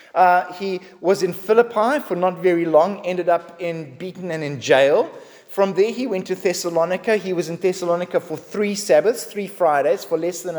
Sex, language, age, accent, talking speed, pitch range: male, English, 30-49, Australian, 195 wpm, 170-210 Hz